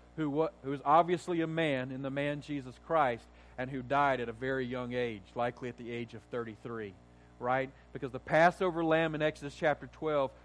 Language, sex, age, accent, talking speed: English, male, 40-59, American, 190 wpm